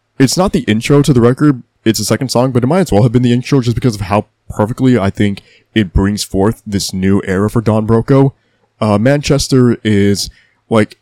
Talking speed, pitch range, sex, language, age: 220 wpm, 105-125 Hz, male, English, 20-39